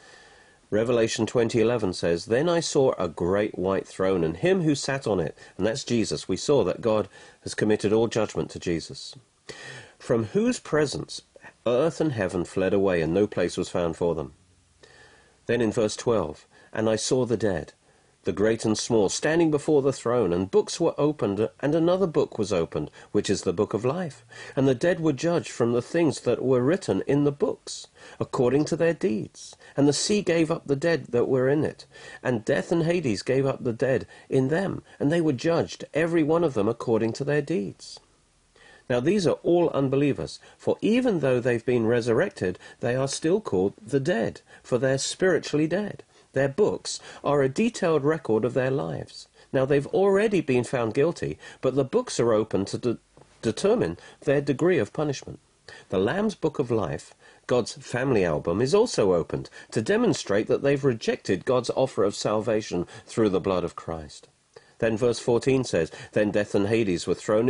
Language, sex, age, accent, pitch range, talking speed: English, male, 50-69, British, 110-160 Hz, 185 wpm